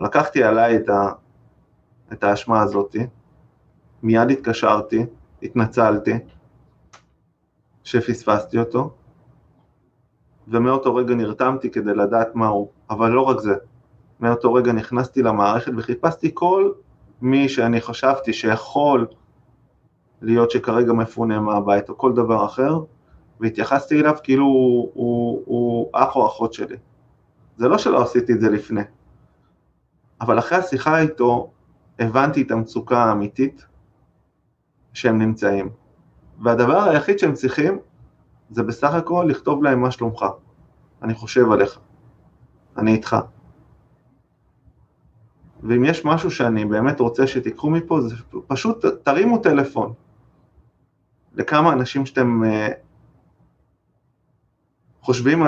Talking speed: 110 wpm